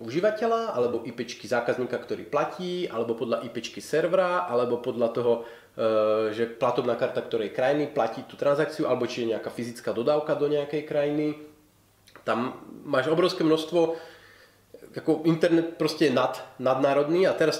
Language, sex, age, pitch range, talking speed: Slovak, male, 30-49, 125-165 Hz, 140 wpm